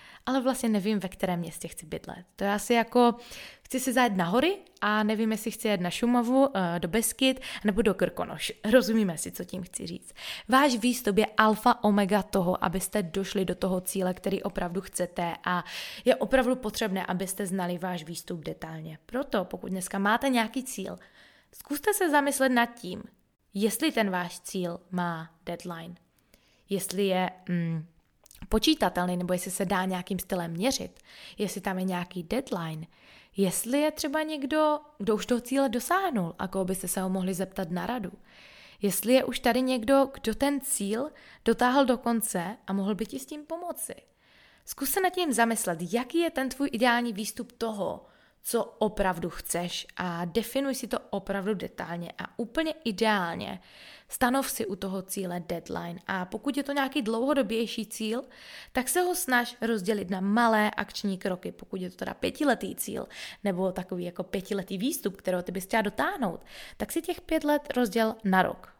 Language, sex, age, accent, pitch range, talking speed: Czech, female, 20-39, native, 185-250 Hz, 170 wpm